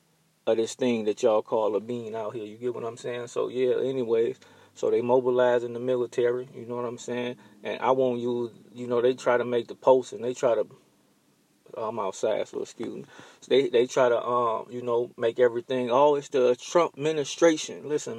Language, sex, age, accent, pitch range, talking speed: English, male, 20-39, American, 125-145 Hz, 215 wpm